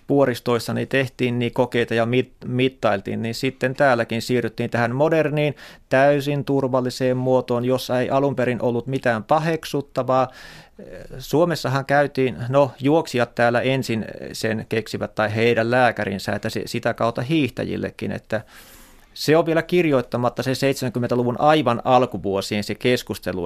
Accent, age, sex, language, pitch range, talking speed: native, 30-49, male, Finnish, 115-145 Hz, 125 wpm